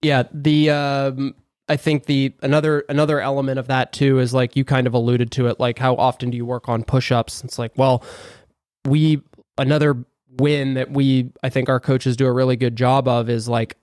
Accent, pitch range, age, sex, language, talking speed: American, 120-140 Hz, 20-39, male, English, 210 wpm